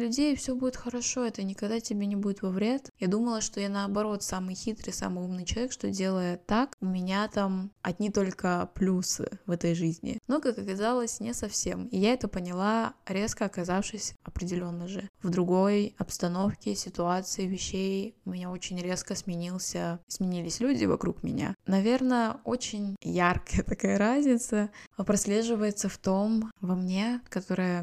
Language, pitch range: Russian, 180-215 Hz